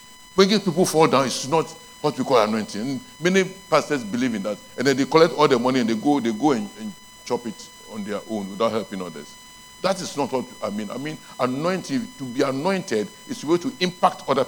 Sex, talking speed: male, 230 wpm